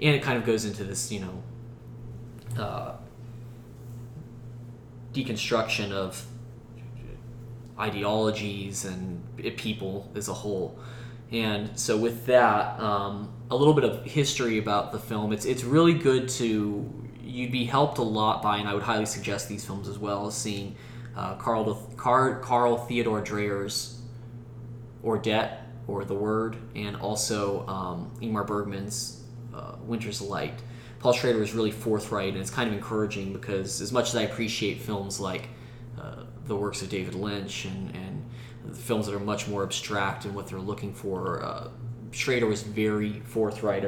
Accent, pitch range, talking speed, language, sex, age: American, 105-120 Hz, 155 wpm, English, male, 20-39